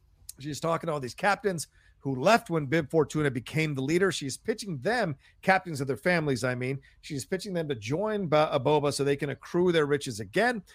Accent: American